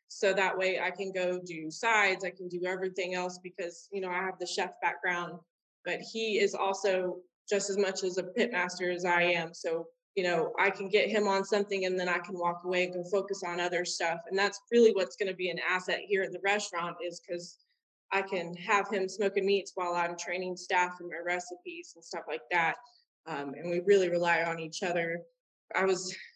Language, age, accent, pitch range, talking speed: English, 20-39, American, 180-205 Hz, 220 wpm